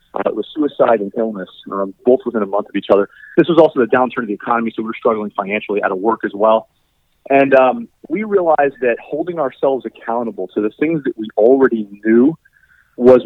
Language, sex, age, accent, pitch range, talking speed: English, male, 30-49, American, 115-155 Hz, 215 wpm